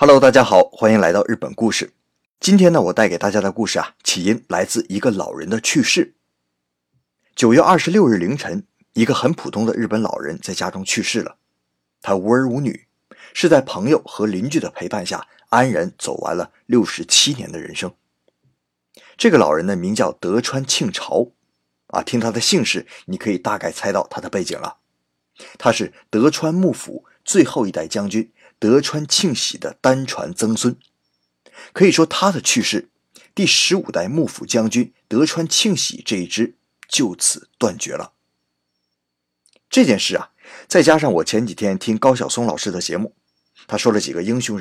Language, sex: Chinese, male